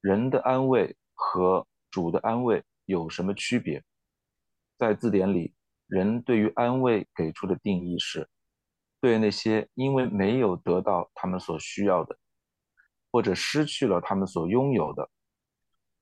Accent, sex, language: native, male, Chinese